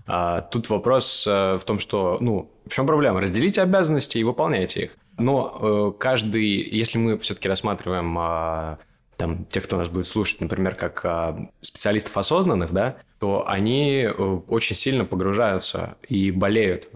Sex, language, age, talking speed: male, Russian, 20-39, 135 wpm